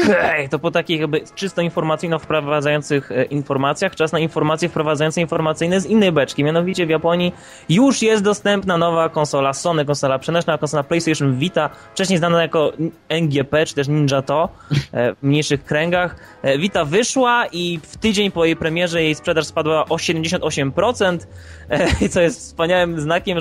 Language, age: Polish, 20-39